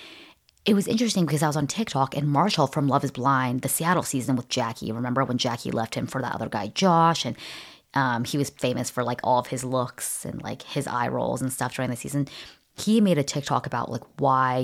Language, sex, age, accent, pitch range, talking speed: English, female, 20-39, American, 130-160 Hz, 235 wpm